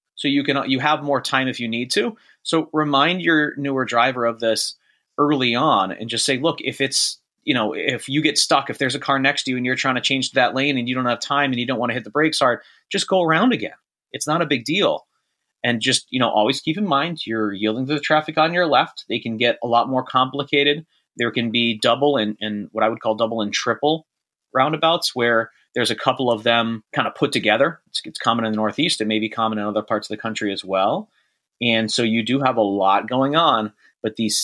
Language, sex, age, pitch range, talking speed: English, male, 30-49, 110-135 Hz, 255 wpm